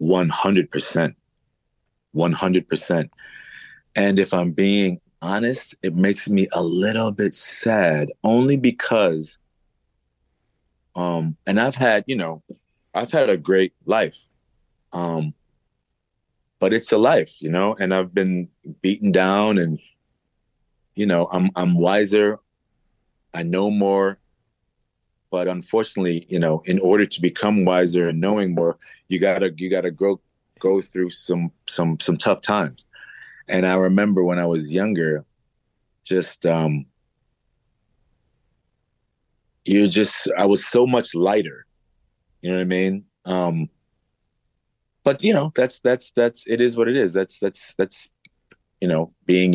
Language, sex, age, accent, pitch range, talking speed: English, male, 30-49, American, 85-100 Hz, 140 wpm